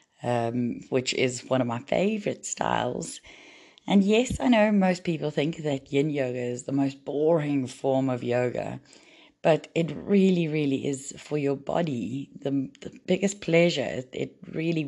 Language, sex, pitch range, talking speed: English, female, 130-160 Hz, 155 wpm